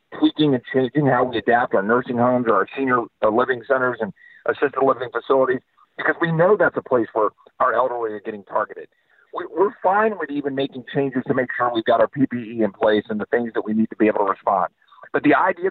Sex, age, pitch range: male, 50-69, 130-180 Hz